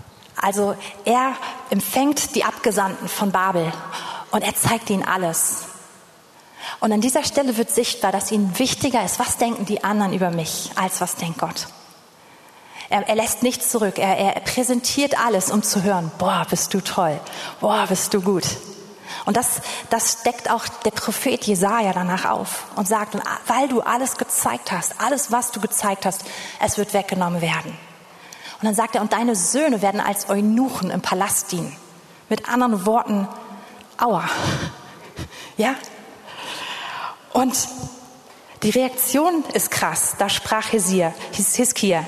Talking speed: 150 wpm